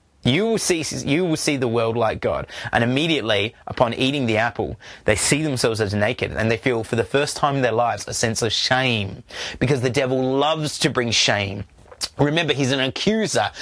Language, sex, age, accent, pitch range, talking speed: English, male, 30-49, Australian, 130-205 Hz, 205 wpm